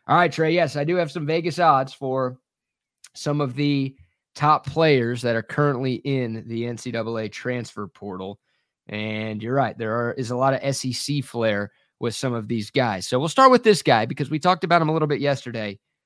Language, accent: English, American